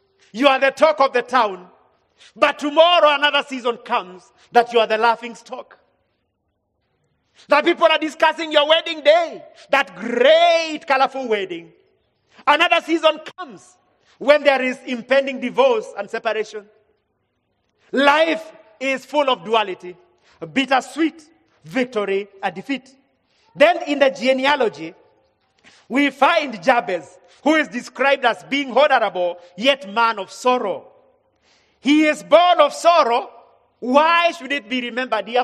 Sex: male